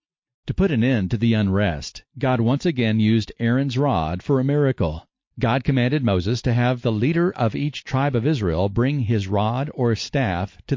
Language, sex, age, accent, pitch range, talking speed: English, male, 50-69, American, 105-135 Hz, 190 wpm